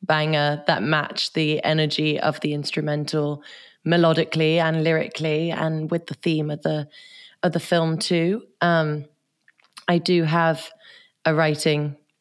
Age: 20-39